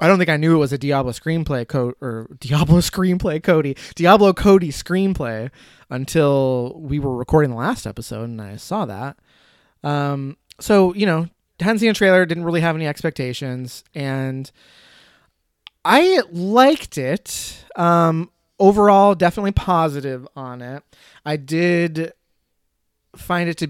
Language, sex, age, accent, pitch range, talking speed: English, male, 20-39, American, 130-170 Hz, 140 wpm